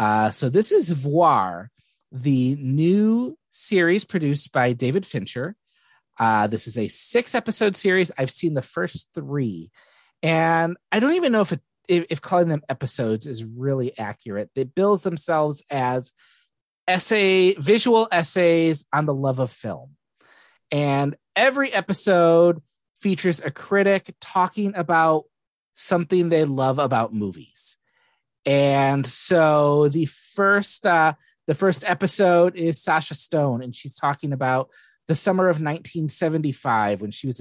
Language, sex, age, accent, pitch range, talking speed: English, male, 30-49, American, 135-190 Hz, 135 wpm